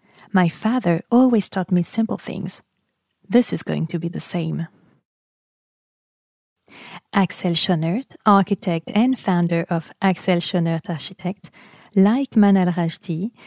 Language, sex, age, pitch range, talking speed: French, female, 30-49, 175-215 Hz, 115 wpm